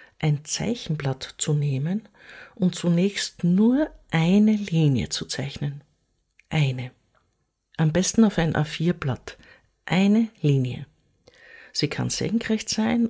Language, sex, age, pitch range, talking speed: German, female, 50-69, 145-200 Hz, 105 wpm